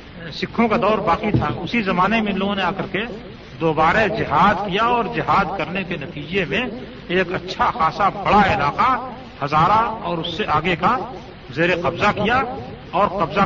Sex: male